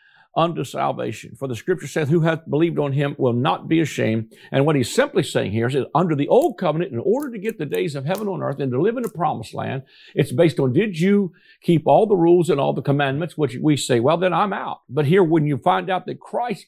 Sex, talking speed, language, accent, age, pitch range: male, 255 wpm, English, American, 50-69, 135-190 Hz